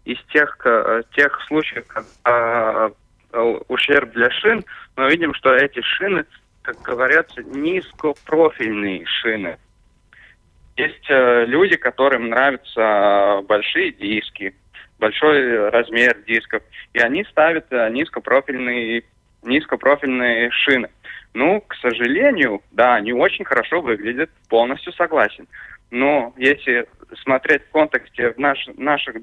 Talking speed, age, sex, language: 100 wpm, 20-39, male, Russian